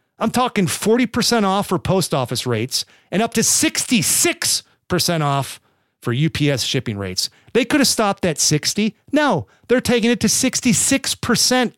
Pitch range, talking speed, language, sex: 130-195 Hz, 150 wpm, English, male